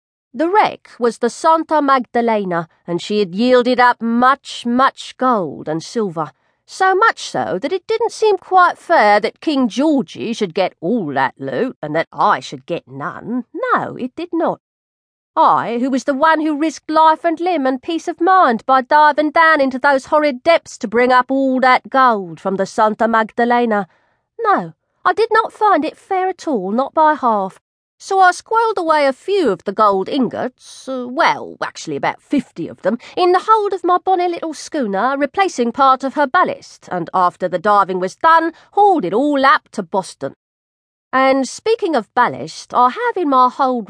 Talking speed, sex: 185 wpm, female